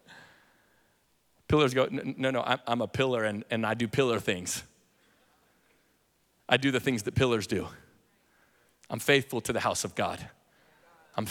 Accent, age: American, 30-49